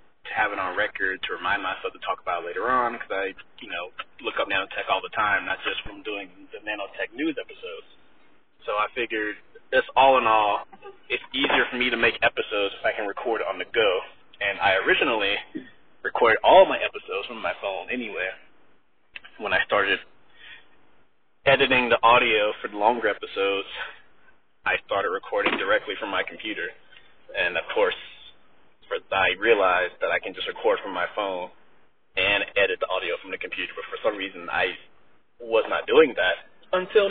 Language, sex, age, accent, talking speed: English, male, 30-49, American, 180 wpm